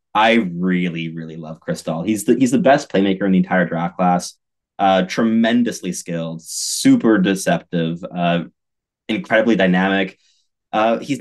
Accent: American